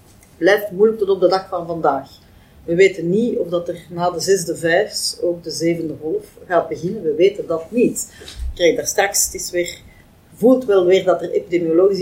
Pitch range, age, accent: 175-225 Hz, 40-59, Dutch